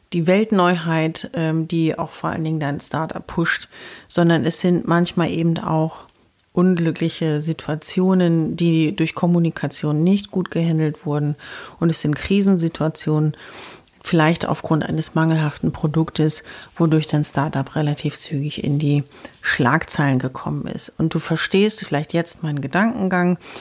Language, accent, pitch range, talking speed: German, German, 150-175 Hz, 130 wpm